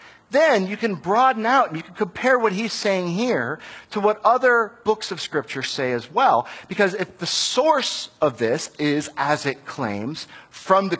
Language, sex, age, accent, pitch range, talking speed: English, male, 50-69, American, 160-230 Hz, 185 wpm